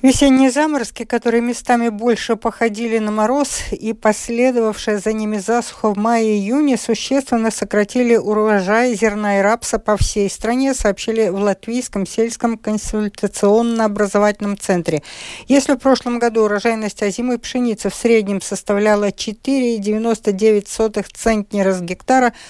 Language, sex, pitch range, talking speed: Russian, female, 200-240 Hz, 115 wpm